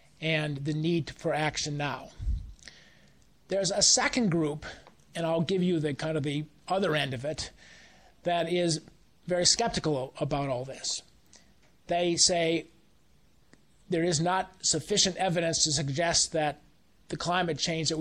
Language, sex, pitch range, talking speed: English, male, 150-175 Hz, 145 wpm